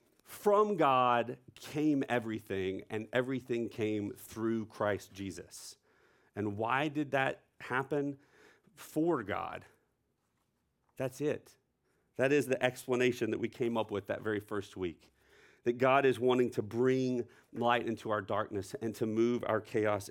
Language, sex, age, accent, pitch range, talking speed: English, male, 40-59, American, 105-130 Hz, 140 wpm